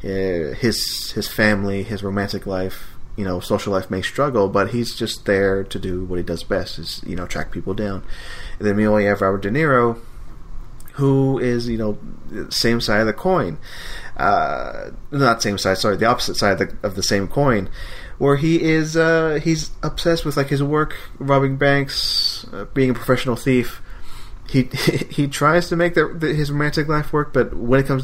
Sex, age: male, 30-49